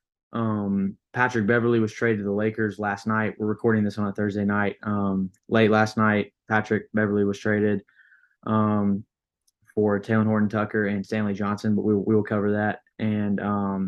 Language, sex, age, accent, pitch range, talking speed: English, male, 20-39, American, 105-120 Hz, 175 wpm